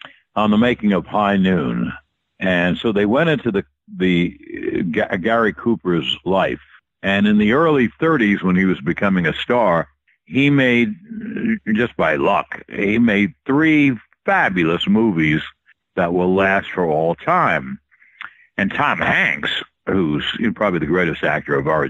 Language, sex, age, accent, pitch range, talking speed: English, male, 60-79, American, 95-140 Hz, 155 wpm